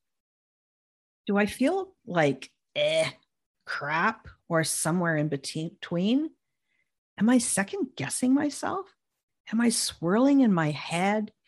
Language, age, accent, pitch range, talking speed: English, 50-69, American, 160-245 Hz, 110 wpm